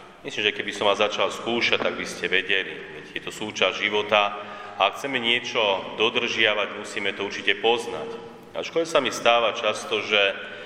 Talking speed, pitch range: 175 wpm, 105-125 Hz